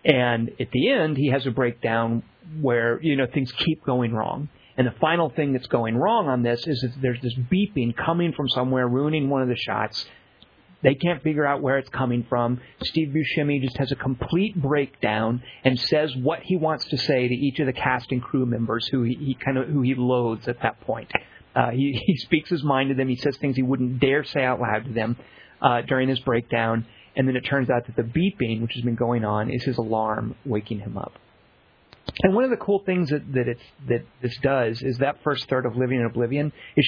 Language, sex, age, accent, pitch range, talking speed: English, male, 40-59, American, 120-145 Hz, 230 wpm